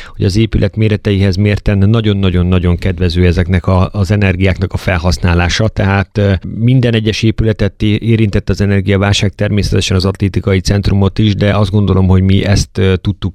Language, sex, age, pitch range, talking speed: Hungarian, male, 30-49, 95-105 Hz, 145 wpm